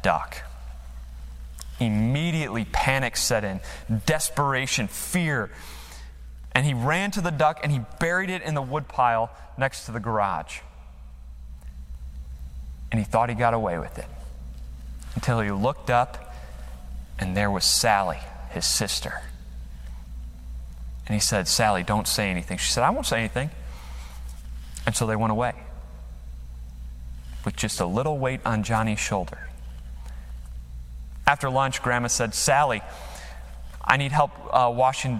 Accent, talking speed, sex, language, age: American, 135 wpm, male, English, 30-49